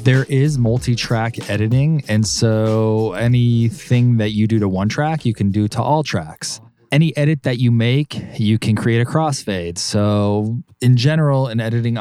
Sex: male